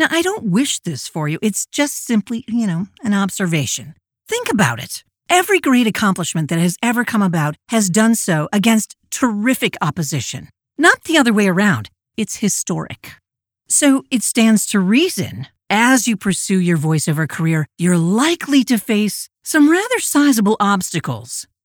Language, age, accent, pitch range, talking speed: English, 50-69, American, 160-230 Hz, 160 wpm